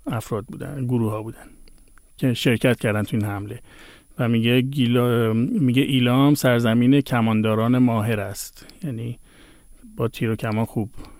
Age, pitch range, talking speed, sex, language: 50-69, 115-140 Hz, 135 wpm, male, Persian